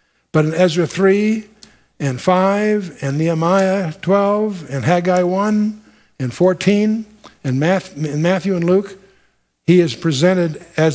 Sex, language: male, English